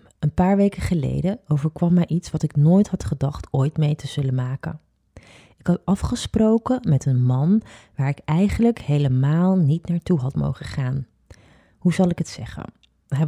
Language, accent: Dutch, Dutch